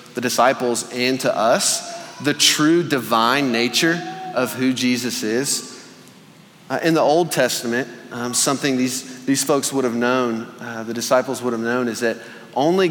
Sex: male